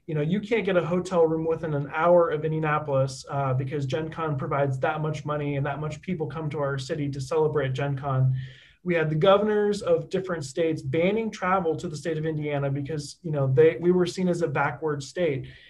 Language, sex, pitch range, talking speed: English, male, 145-175 Hz, 220 wpm